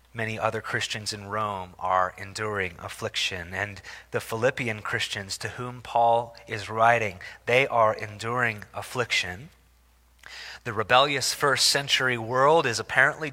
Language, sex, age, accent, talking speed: English, male, 30-49, American, 125 wpm